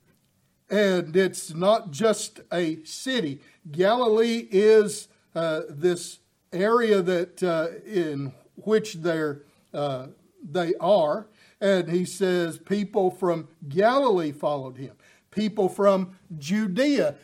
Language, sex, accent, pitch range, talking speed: English, male, American, 180-225 Hz, 100 wpm